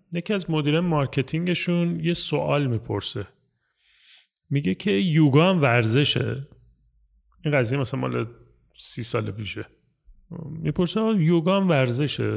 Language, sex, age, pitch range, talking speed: Persian, male, 30-49, 120-165 Hz, 100 wpm